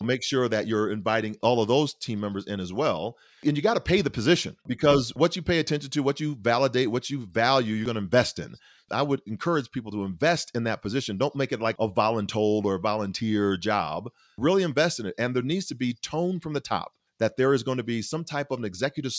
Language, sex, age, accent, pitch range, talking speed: English, male, 40-59, American, 110-145 Hz, 245 wpm